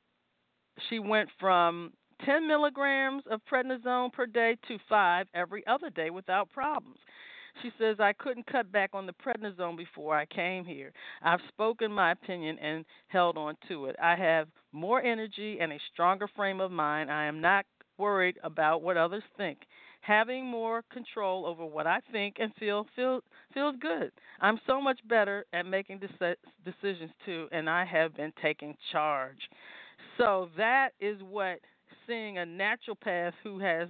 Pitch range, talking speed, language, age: 165-220 Hz, 160 wpm, English, 40-59